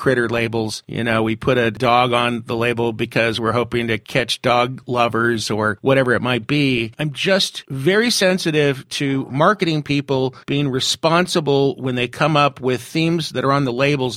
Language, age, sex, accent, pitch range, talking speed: English, 50-69, male, American, 120-155 Hz, 180 wpm